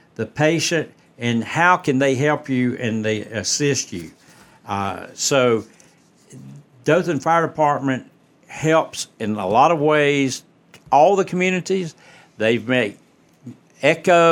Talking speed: 120 wpm